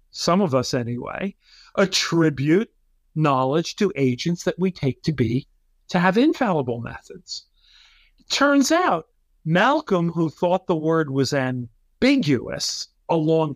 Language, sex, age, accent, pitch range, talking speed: English, male, 50-69, American, 120-180 Hz, 125 wpm